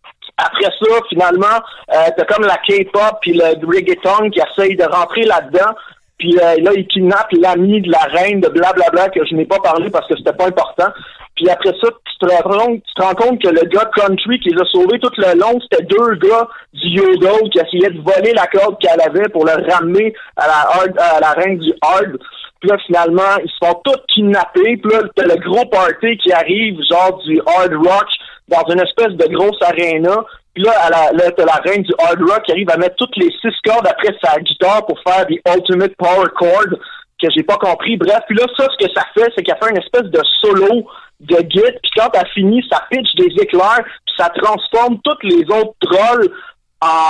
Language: French